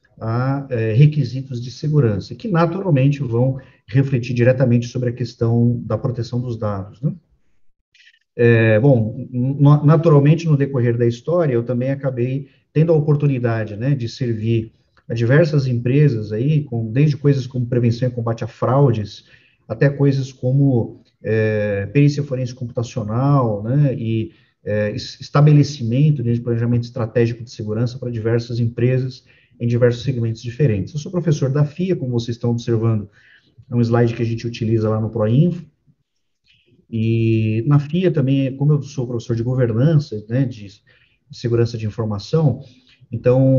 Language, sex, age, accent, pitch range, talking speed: Portuguese, male, 40-59, Brazilian, 115-145 Hz, 145 wpm